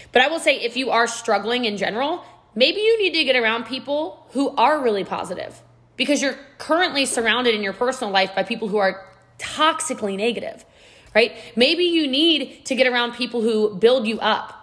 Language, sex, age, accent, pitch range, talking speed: English, female, 20-39, American, 225-300 Hz, 195 wpm